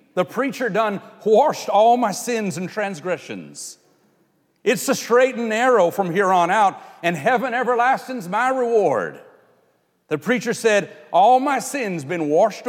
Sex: male